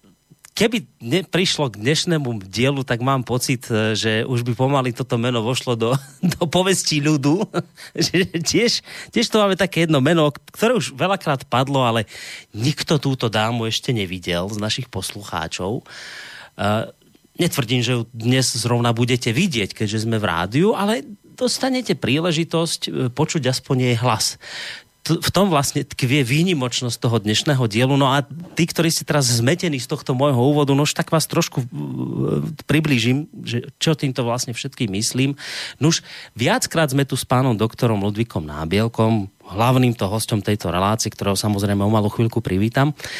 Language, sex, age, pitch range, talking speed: Slovak, male, 30-49, 115-155 Hz, 155 wpm